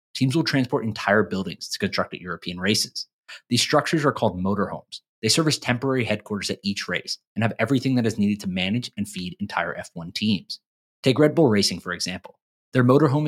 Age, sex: 20-39, male